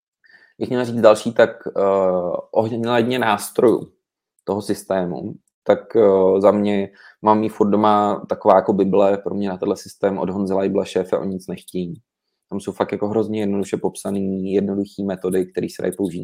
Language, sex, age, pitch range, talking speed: Czech, male, 20-39, 95-105 Hz, 165 wpm